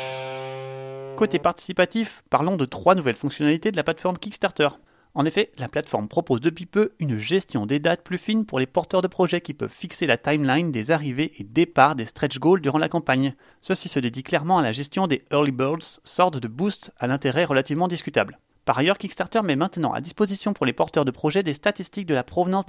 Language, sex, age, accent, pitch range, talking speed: French, male, 30-49, French, 135-185 Hz, 205 wpm